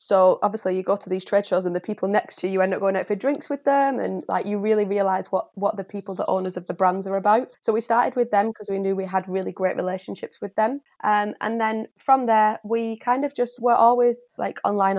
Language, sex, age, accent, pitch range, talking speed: English, female, 20-39, British, 190-225 Hz, 270 wpm